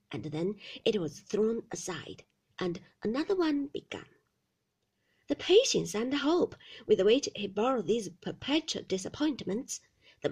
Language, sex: Chinese, female